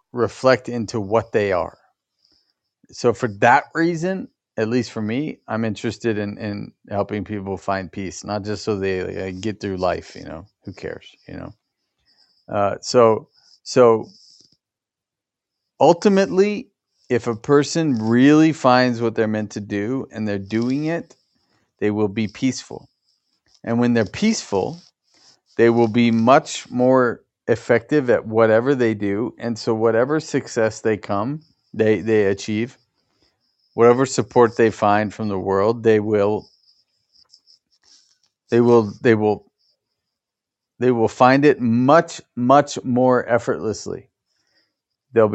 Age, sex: 40-59, male